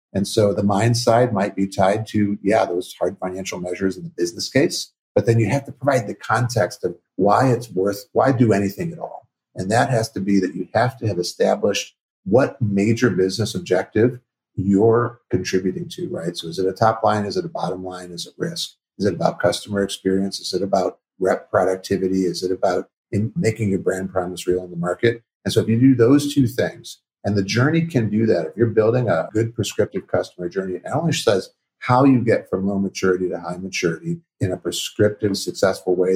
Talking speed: 210 wpm